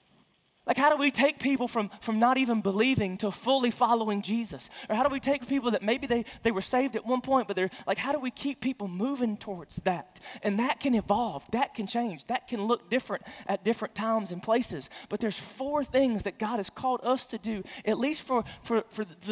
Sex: male